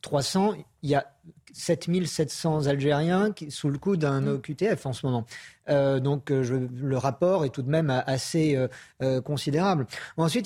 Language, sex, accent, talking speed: French, male, French, 165 wpm